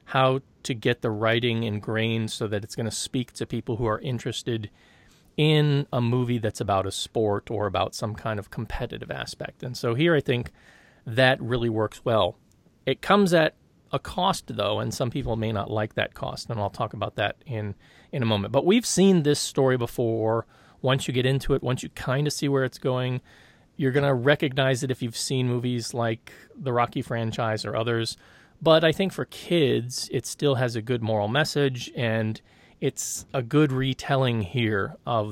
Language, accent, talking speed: English, American, 195 wpm